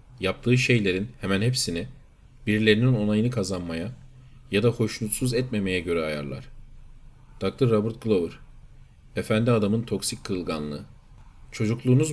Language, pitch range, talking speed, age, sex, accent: Turkish, 105-130 Hz, 105 wpm, 40-59, male, native